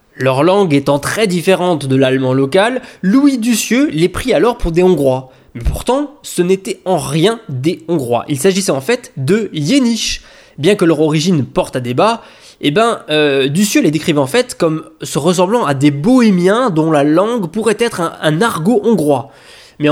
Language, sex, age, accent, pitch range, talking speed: French, male, 20-39, French, 145-210 Hz, 180 wpm